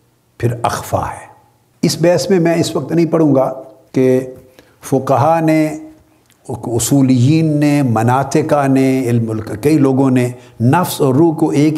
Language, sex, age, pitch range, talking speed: Urdu, male, 60-79, 120-155 Hz, 140 wpm